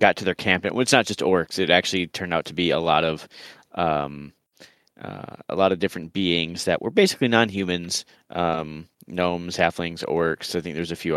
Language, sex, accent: English, male, American